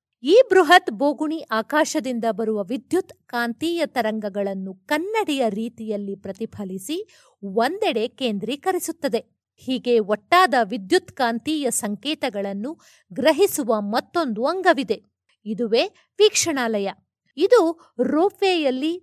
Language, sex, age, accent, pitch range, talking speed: Kannada, female, 50-69, native, 220-325 Hz, 80 wpm